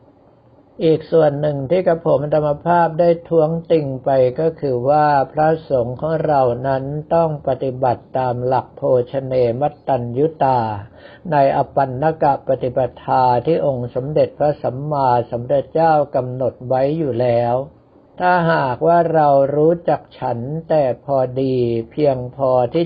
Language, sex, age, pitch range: Thai, male, 60-79, 130-155 Hz